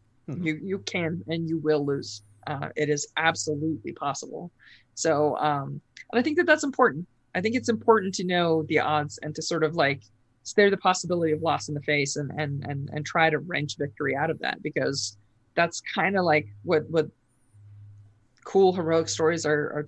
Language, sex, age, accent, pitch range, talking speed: English, female, 20-39, American, 140-170 Hz, 195 wpm